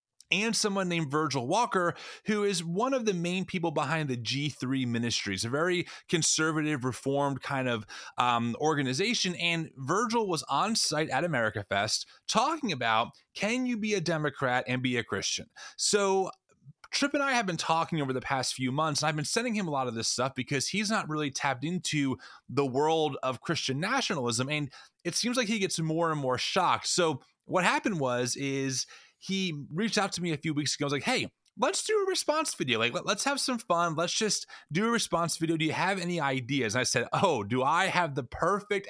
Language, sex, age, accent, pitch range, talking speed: English, male, 30-49, American, 135-195 Hz, 205 wpm